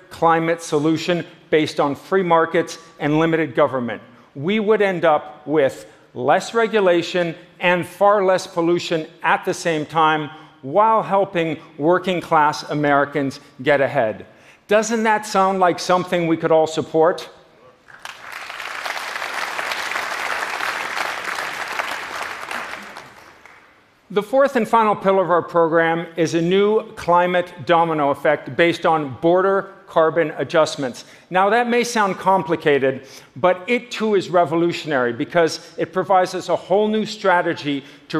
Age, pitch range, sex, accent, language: 50-69, 155-190 Hz, male, American, Korean